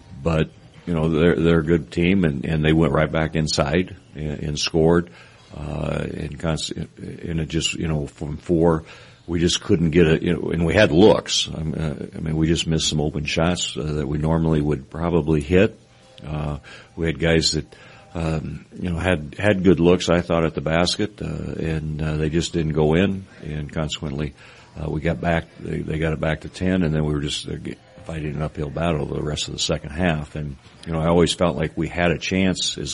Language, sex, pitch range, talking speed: English, male, 75-85 Hz, 220 wpm